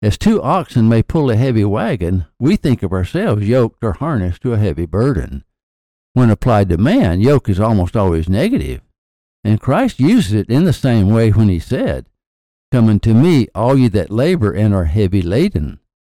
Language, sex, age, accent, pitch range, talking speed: English, male, 60-79, American, 95-125 Hz, 185 wpm